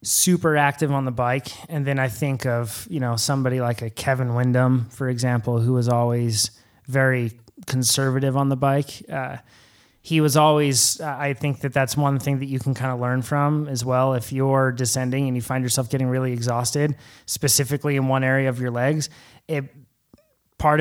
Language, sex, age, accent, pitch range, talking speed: English, male, 20-39, American, 125-145 Hz, 190 wpm